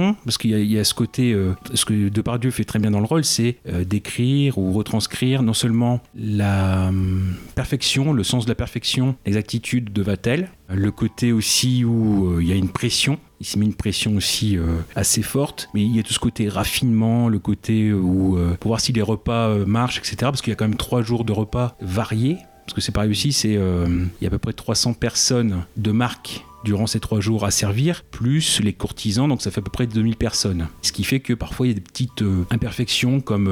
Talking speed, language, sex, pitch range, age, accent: 235 wpm, French, male, 100-120 Hz, 30-49, French